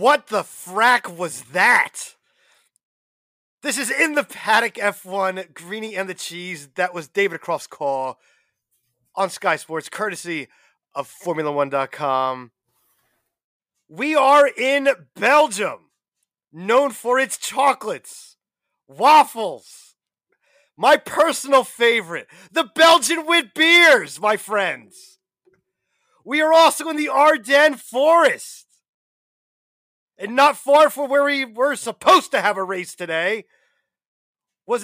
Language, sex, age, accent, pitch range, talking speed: English, male, 30-49, American, 190-280 Hz, 110 wpm